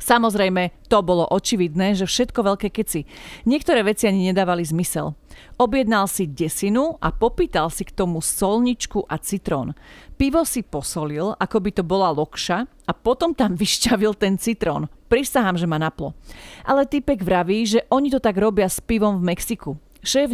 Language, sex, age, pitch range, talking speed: Slovak, female, 40-59, 180-230 Hz, 160 wpm